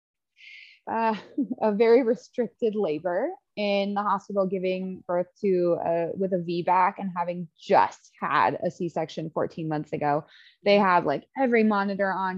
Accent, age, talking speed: American, 20-39, 145 wpm